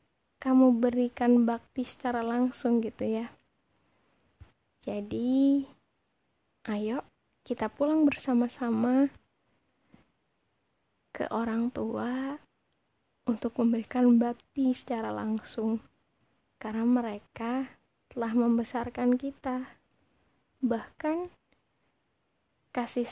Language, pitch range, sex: Indonesian, 230-260 Hz, female